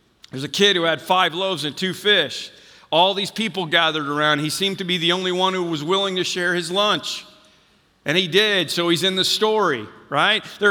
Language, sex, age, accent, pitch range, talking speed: English, male, 50-69, American, 180-225 Hz, 220 wpm